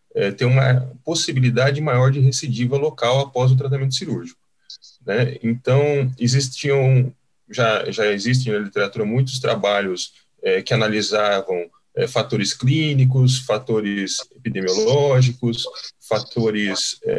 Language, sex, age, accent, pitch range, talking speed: Portuguese, male, 20-39, Brazilian, 115-140 Hz, 110 wpm